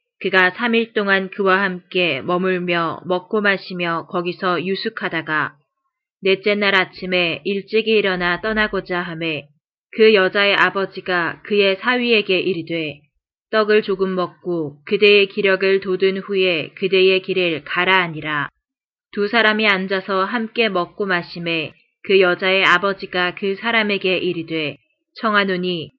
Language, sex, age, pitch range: Korean, female, 20-39, 175-205 Hz